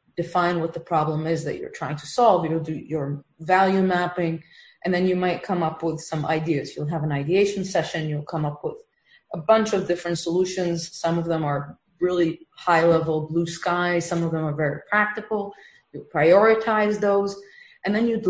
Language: English